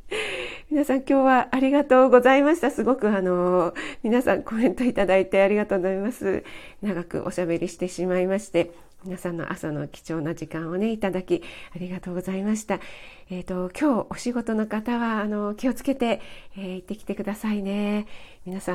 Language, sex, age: Japanese, female, 40-59